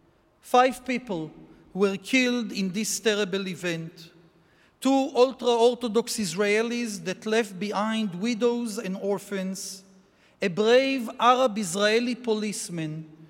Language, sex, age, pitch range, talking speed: English, male, 40-59, 195-245 Hz, 95 wpm